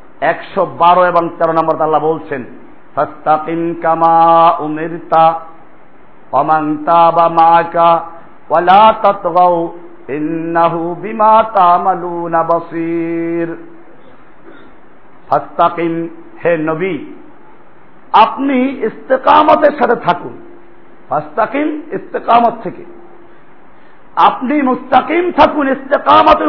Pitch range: 170-285 Hz